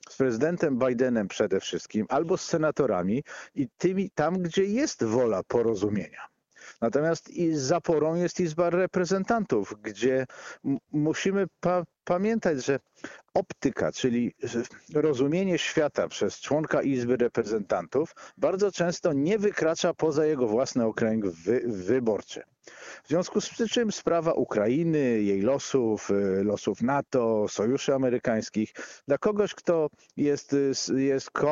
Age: 50-69